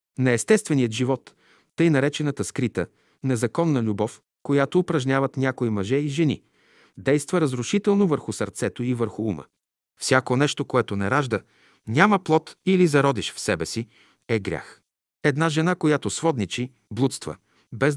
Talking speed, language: 135 wpm, Bulgarian